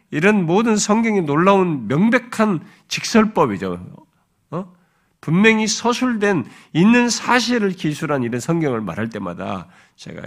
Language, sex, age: Korean, male, 50-69